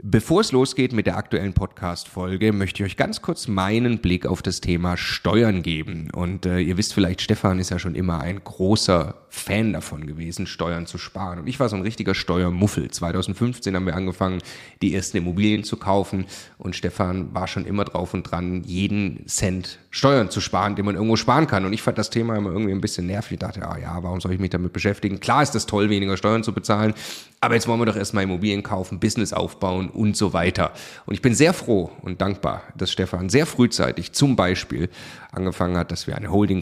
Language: German